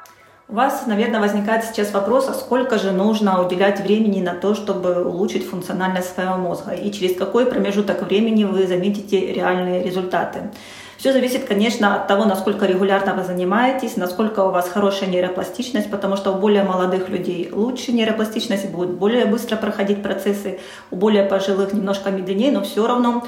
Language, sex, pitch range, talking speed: Russian, female, 195-225 Hz, 160 wpm